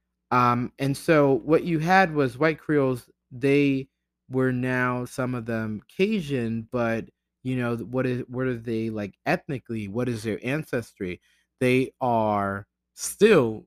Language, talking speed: English, 140 wpm